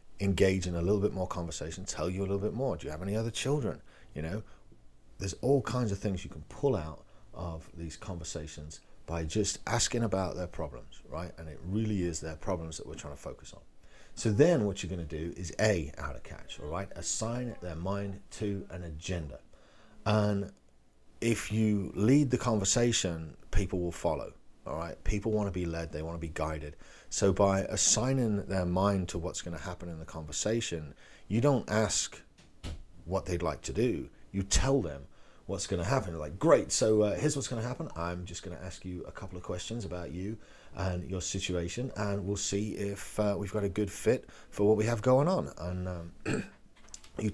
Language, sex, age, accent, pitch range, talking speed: English, male, 40-59, British, 85-110 Hz, 210 wpm